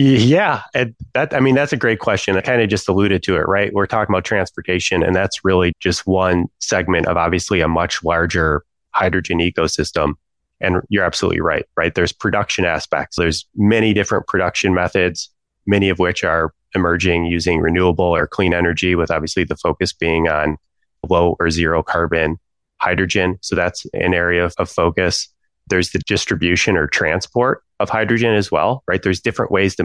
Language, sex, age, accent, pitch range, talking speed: English, male, 20-39, American, 85-95 Hz, 180 wpm